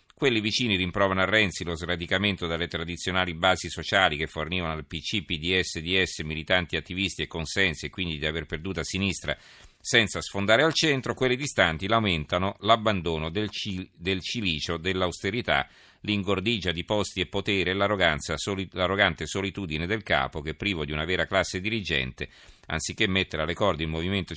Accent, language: native, Italian